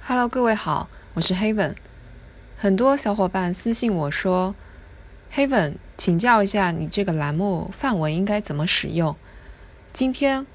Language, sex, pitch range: Chinese, female, 150-215 Hz